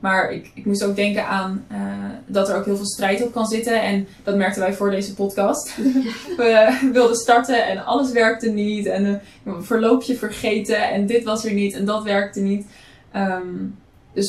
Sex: female